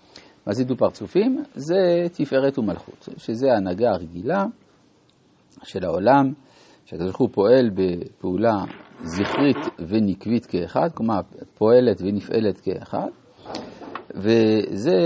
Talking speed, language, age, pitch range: 95 wpm, Hebrew, 50-69, 105-150 Hz